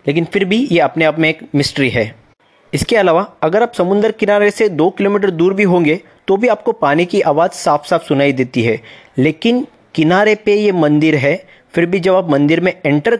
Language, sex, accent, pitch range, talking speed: Hindi, male, native, 150-200 Hz, 210 wpm